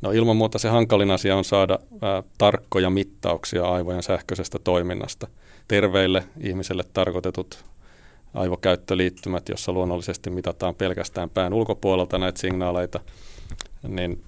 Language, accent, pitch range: Finnish, native, 90-100 Hz